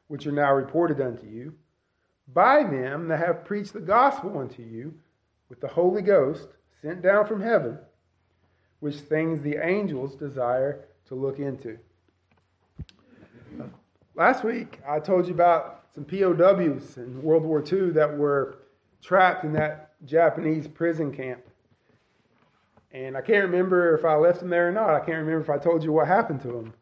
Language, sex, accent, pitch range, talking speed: English, male, American, 130-180 Hz, 165 wpm